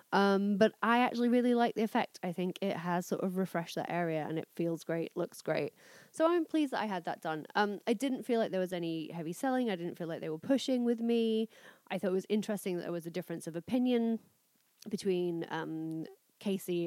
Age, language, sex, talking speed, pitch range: 30-49, English, female, 230 wpm, 170-205 Hz